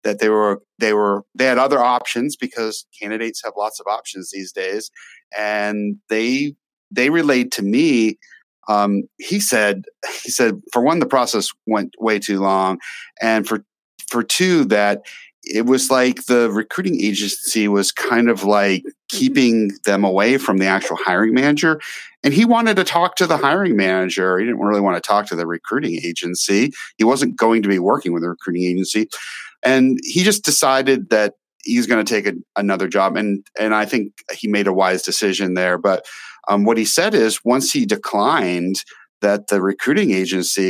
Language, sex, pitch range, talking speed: English, male, 95-125 Hz, 180 wpm